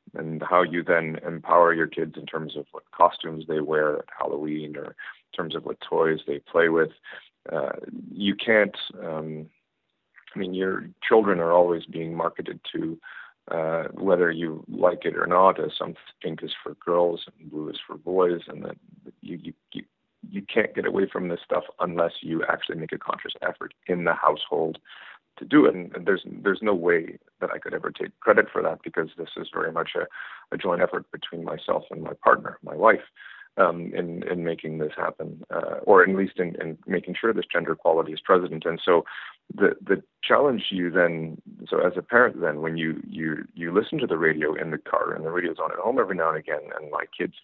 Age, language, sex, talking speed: 40-59, English, male, 205 wpm